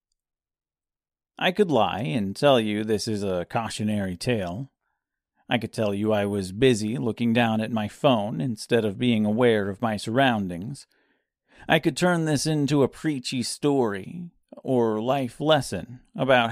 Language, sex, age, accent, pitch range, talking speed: English, male, 40-59, American, 110-150 Hz, 155 wpm